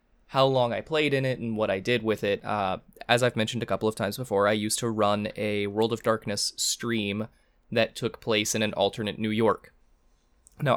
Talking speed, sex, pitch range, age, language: 215 wpm, male, 110-140 Hz, 20-39, English